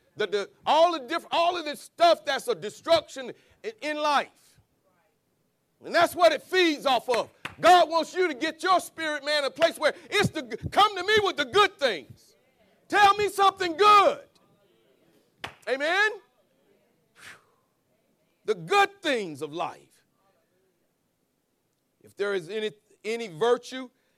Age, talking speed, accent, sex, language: 50-69, 140 wpm, American, male, English